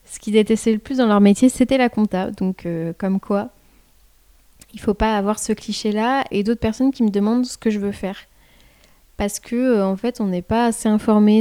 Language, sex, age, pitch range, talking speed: French, female, 20-39, 195-230 Hz, 225 wpm